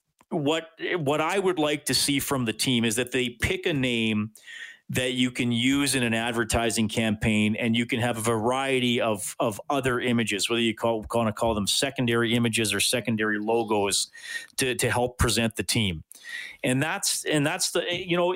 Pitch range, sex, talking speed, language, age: 115-140 Hz, male, 190 wpm, English, 40-59